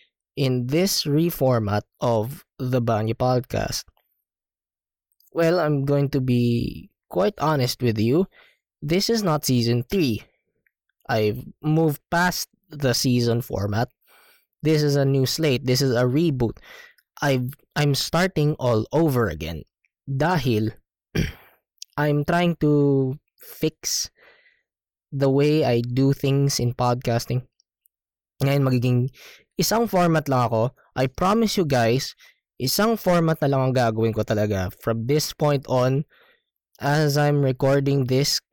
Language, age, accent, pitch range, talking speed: Filipino, 20-39, native, 120-155 Hz, 125 wpm